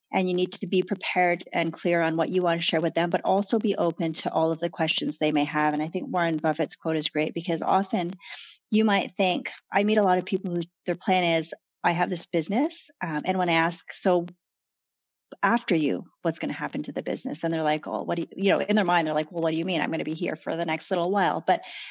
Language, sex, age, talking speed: English, female, 30-49, 270 wpm